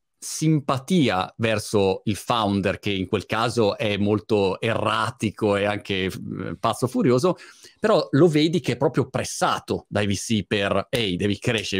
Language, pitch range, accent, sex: Italian, 100-130 Hz, native, male